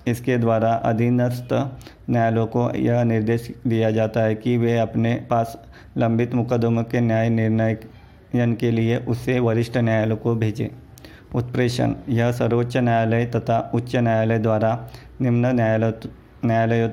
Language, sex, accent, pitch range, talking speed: Hindi, male, native, 115-120 Hz, 130 wpm